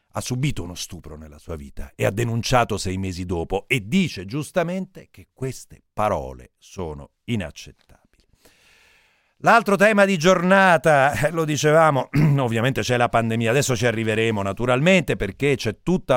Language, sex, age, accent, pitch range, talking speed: Italian, male, 40-59, native, 110-150 Hz, 140 wpm